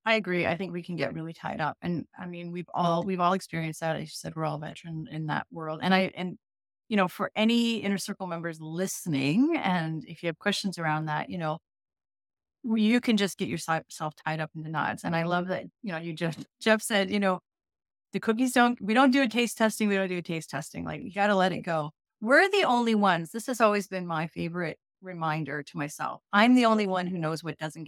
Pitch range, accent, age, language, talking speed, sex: 165-210 Hz, American, 30-49, English, 245 wpm, female